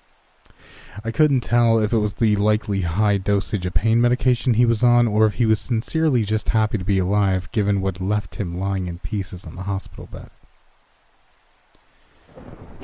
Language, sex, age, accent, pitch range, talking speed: English, male, 30-49, American, 90-105 Hz, 180 wpm